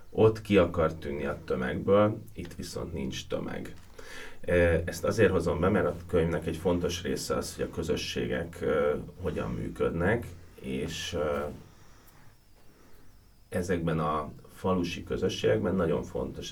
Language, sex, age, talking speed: Hungarian, male, 30-49, 120 wpm